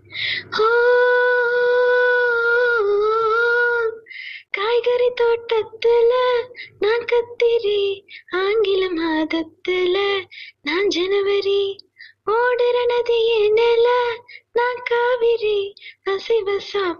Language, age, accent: Tamil, 20-39, native